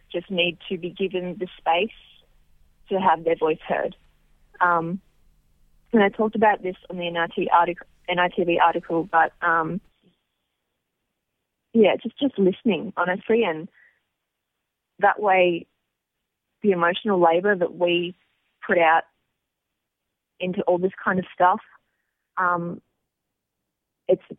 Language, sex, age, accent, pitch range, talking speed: English, female, 20-39, Australian, 165-190 Hz, 125 wpm